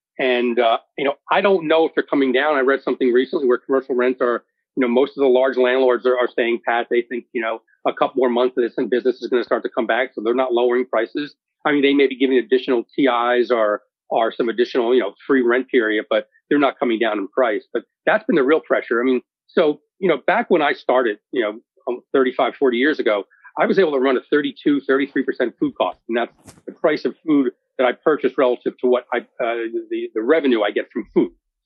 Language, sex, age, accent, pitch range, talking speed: English, male, 40-59, American, 125-175 Hz, 245 wpm